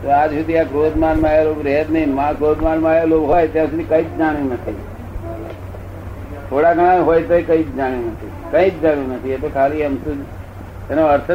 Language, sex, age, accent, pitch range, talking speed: Gujarati, male, 60-79, native, 95-150 Hz, 190 wpm